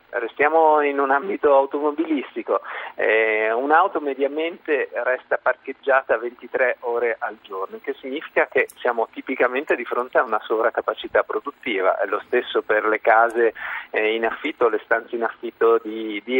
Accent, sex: native, male